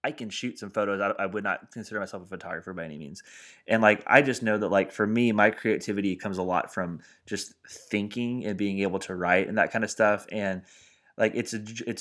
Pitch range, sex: 95-110 Hz, male